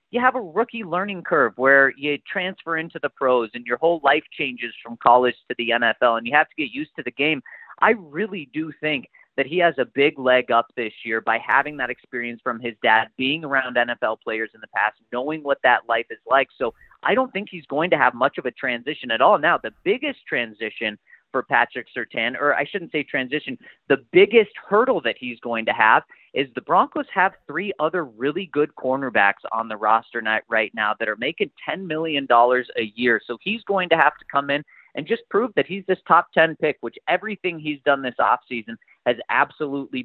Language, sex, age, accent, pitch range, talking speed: English, male, 30-49, American, 125-185 Hz, 215 wpm